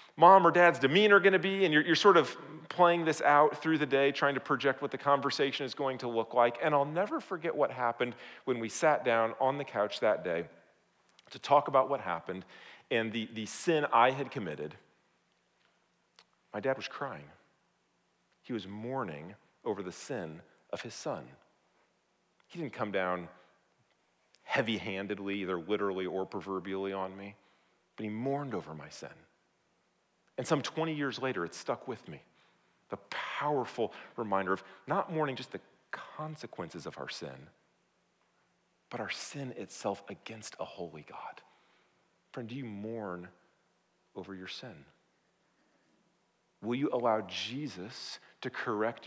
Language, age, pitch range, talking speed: English, 40-59, 105-145 Hz, 155 wpm